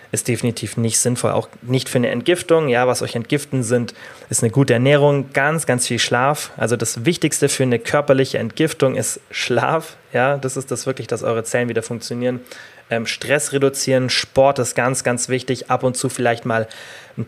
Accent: German